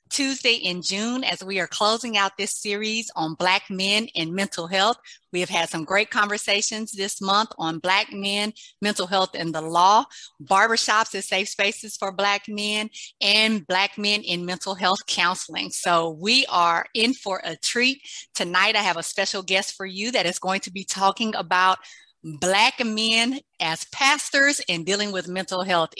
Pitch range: 185-230 Hz